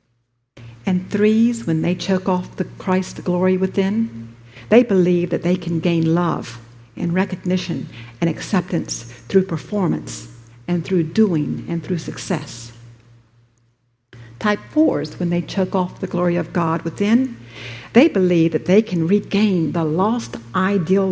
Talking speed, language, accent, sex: 135 wpm, English, American, female